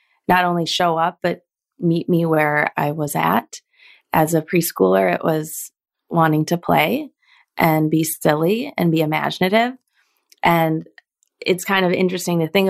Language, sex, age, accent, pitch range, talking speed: English, female, 20-39, American, 155-185 Hz, 150 wpm